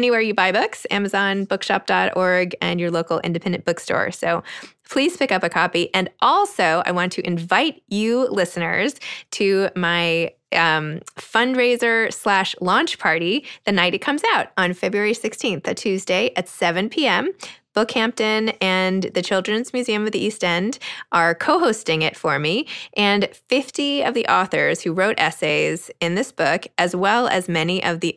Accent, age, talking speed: American, 20-39, 160 wpm